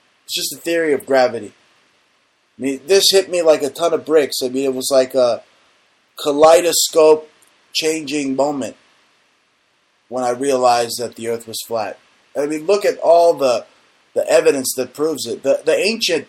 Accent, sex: American, male